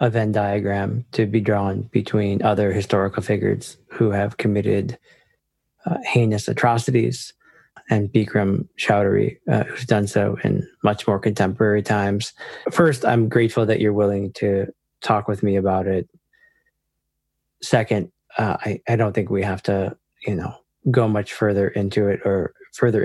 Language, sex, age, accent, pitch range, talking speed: English, male, 20-39, American, 105-120 Hz, 150 wpm